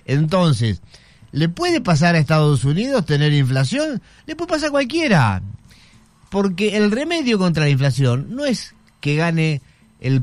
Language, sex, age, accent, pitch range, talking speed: Spanish, male, 40-59, Argentinian, 125-180 Hz, 145 wpm